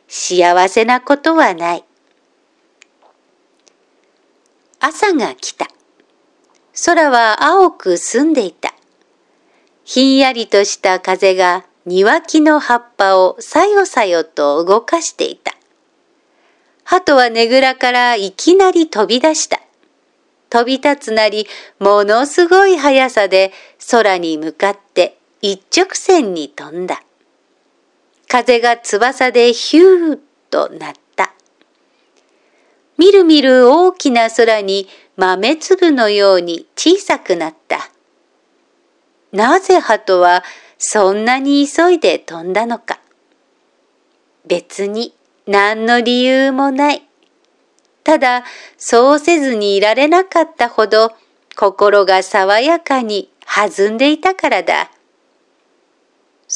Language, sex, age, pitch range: Japanese, female, 50-69, 200-325 Hz